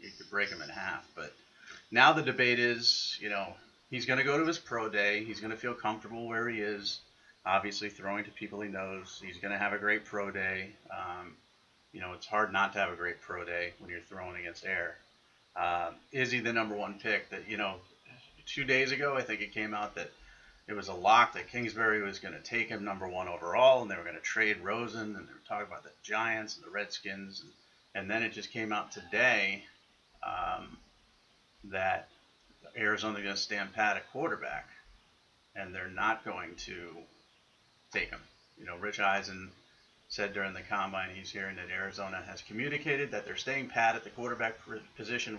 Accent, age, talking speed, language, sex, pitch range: American, 30-49, 210 wpm, English, male, 95-115 Hz